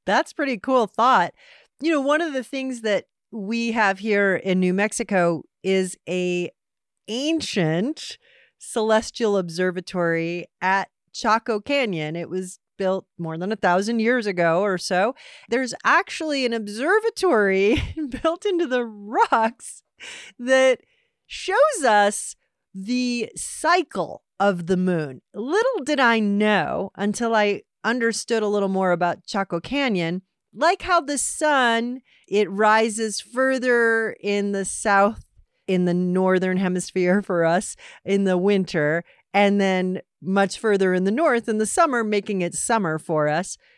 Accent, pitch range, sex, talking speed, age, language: American, 185-255 Hz, female, 135 wpm, 40-59, English